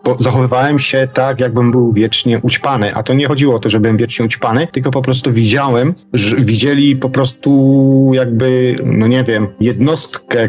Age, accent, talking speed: 40-59, native, 175 wpm